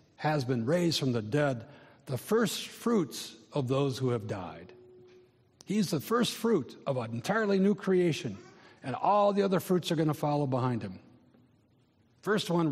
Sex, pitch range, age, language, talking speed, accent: male, 115-145 Hz, 60-79, English, 170 wpm, American